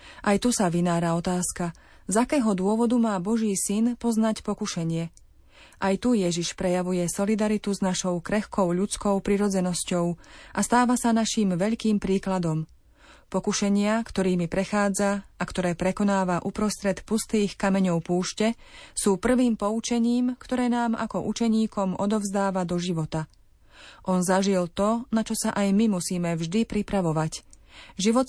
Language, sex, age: Slovak, female, 30-49